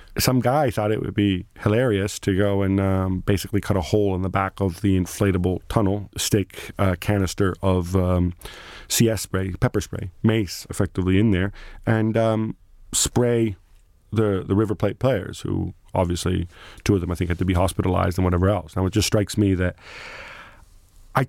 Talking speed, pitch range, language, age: 180 wpm, 95-105 Hz, English, 40-59